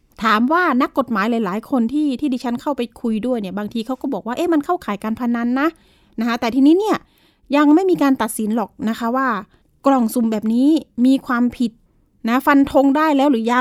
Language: Thai